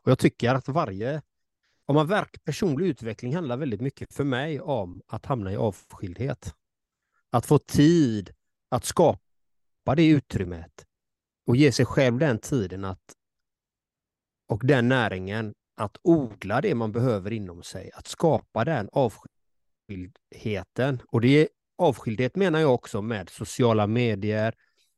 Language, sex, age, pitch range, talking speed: Swedish, male, 30-49, 105-140 Hz, 135 wpm